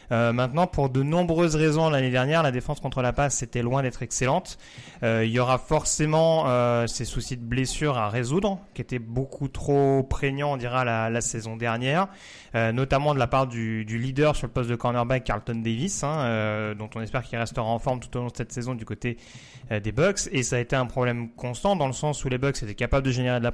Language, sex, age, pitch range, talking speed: French, male, 30-49, 120-145 Hz, 240 wpm